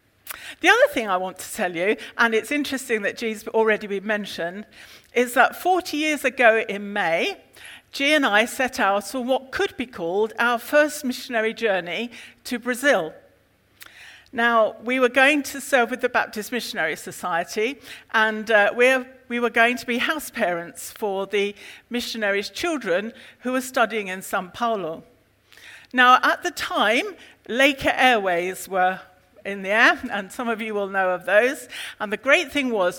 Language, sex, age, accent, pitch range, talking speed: English, female, 50-69, British, 200-255 Hz, 170 wpm